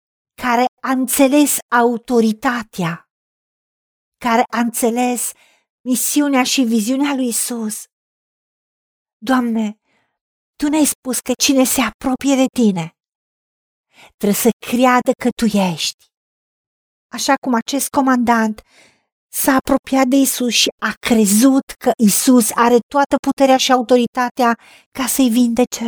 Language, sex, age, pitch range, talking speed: Romanian, female, 40-59, 230-275 Hz, 110 wpm